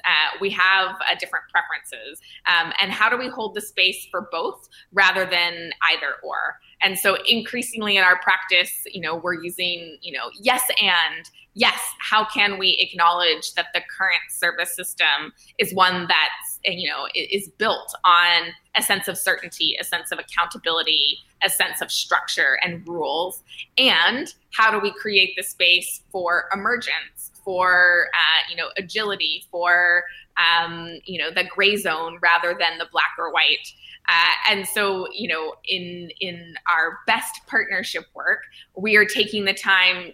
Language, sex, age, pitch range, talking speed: English, female, 20-39, 175-205 Hz, 165 wpm